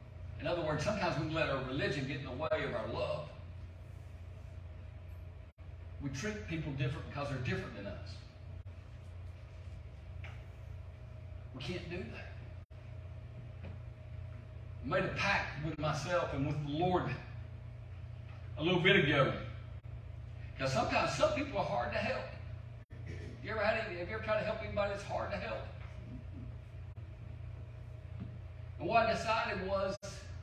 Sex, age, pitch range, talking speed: male, 40-59, 100-130 Hz, 130 wpm